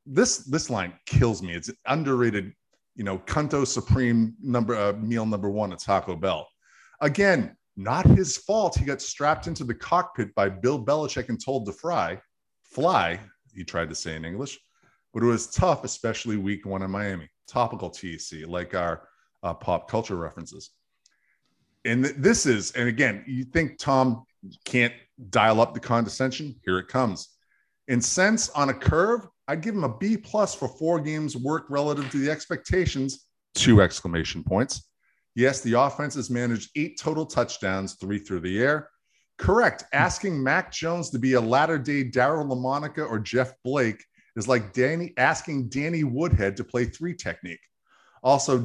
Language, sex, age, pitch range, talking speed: English, male, 30-49, 105-145 Hz, 165 wpm